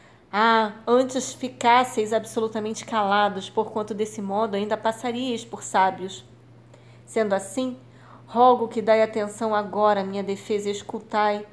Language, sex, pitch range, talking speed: Portuguese, female, 200-230 Hz, 125 wpm